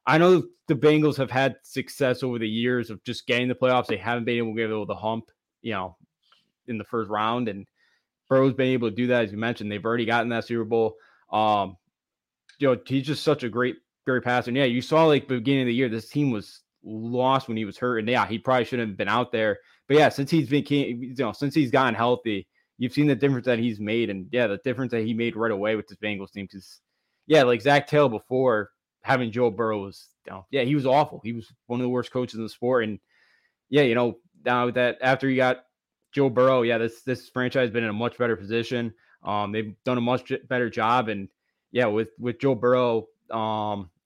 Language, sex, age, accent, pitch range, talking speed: English, male, 20-39, American, 115-130 Hz, 235 wpm